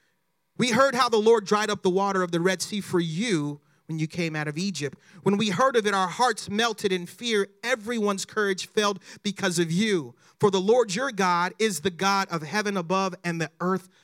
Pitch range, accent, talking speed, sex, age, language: 160-205 Hz, American, 220 wpm, male, 40-59, English